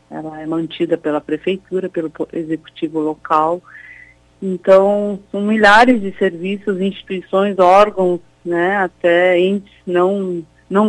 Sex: female